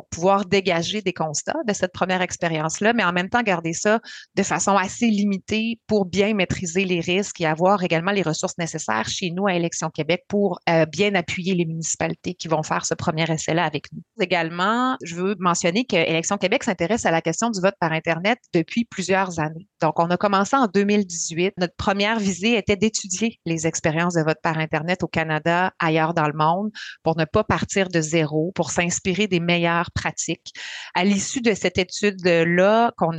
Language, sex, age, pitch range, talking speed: French, female, 30-49, 165-205 Hz, 195 wpm